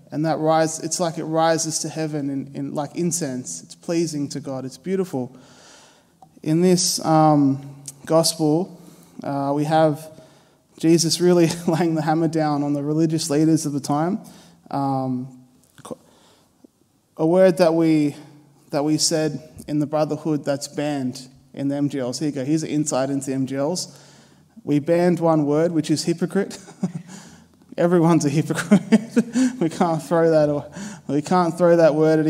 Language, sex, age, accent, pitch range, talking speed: English, male, 20-39, Australian, 150-175 Hz, 160 wpm